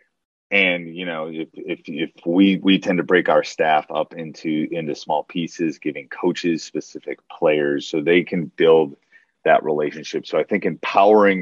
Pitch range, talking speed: 75-95 Hz, 170 wpm